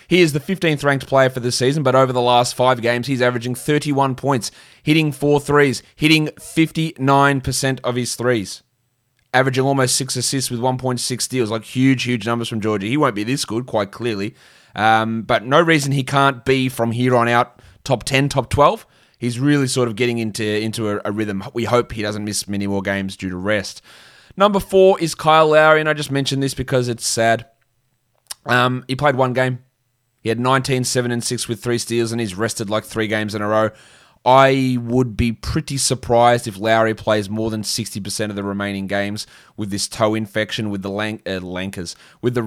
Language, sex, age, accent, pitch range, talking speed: English, male, 20-39, Australian, 110-135 Hz, 205 wpm